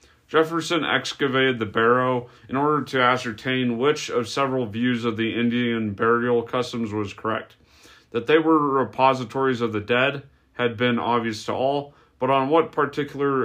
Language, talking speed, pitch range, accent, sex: English, 155 wpm, 115-130 Hz, American, male